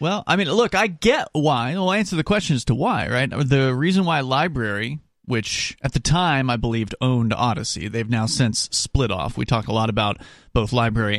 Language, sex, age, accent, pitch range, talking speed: English, male, 30-49, American, 110-145 Hz, 215 wpm